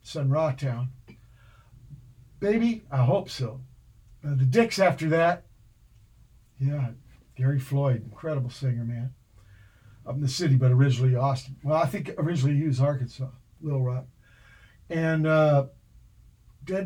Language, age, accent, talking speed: English, 50-69, American, 130 wpm